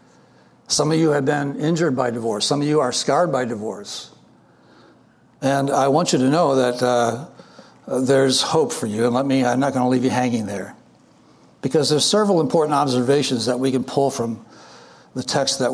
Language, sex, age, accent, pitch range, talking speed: English, male, 60-79, American, 130-155 Hz, 195 wpm